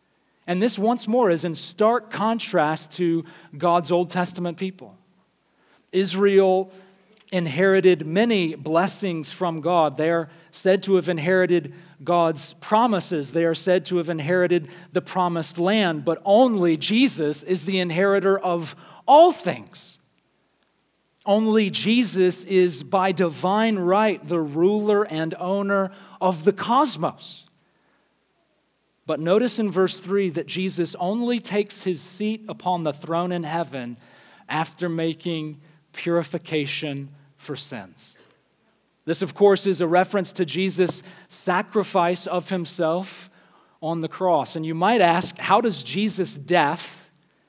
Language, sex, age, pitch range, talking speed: English, male, 40-59, 165-195 Hz, 130 wpm